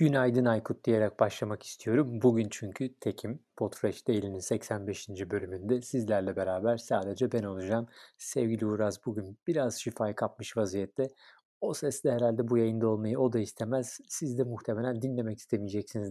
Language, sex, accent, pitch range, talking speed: Turkish, male, native, 110-145 Hz, 140 wpm